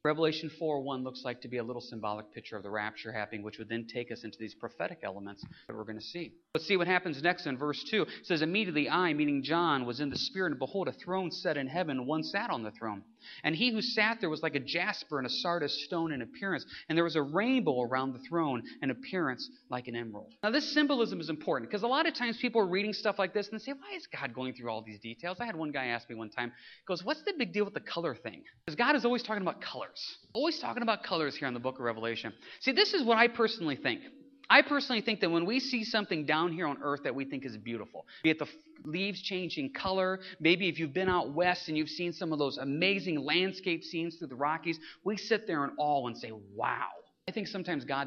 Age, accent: 30-49, American